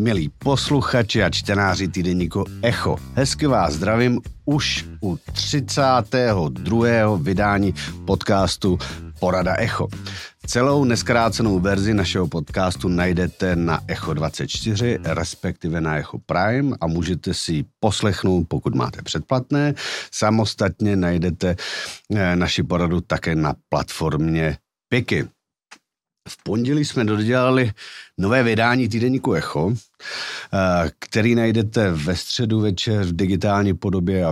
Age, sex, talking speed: 50-69, male, 105 wpm